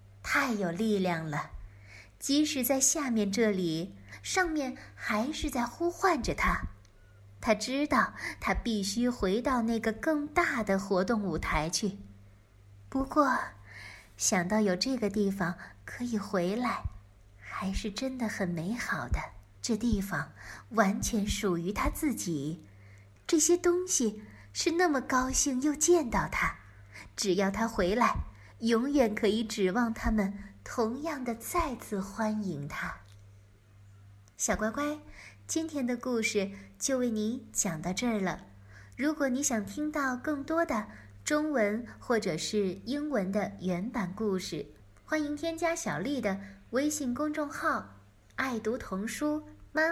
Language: Chinese